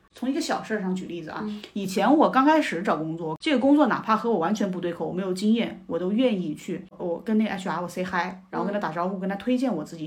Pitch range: 185-250 Hz